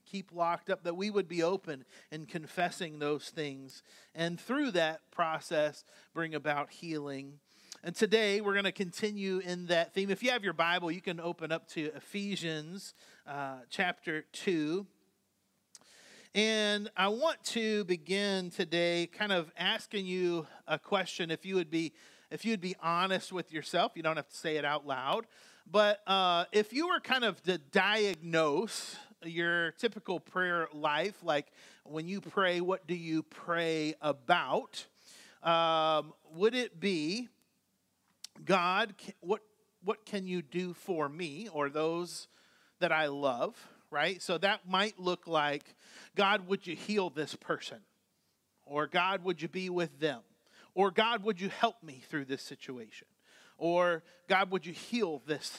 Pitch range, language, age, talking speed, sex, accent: 160-200 Hz, English, 40-59, 155 wpm, male, American